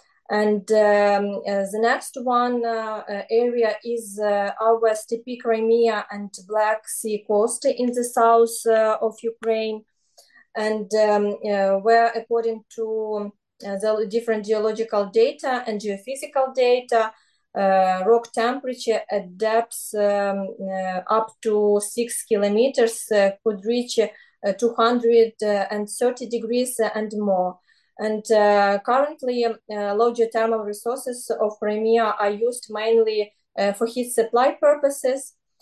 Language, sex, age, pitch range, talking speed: English, female, 20-39, 210-235 Hz, 125 wpm